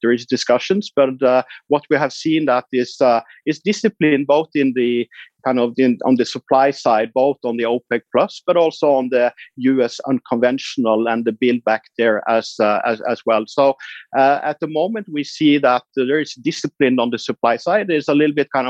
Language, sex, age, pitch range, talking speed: English, male, 50-69, 120-150 Hz, 210 wpm